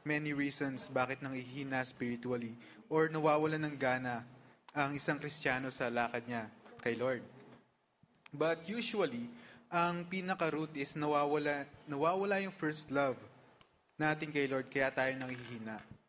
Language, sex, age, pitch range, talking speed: Filipino, male, 20-39, 130-165 Hz, 135 wpm